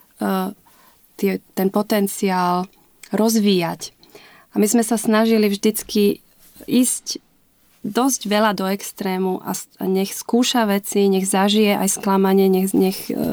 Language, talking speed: Slovak, 115 wpm